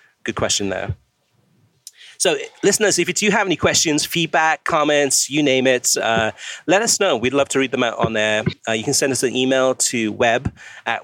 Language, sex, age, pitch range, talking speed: English, male, 30-49, 115-160 Hz, 205 wpm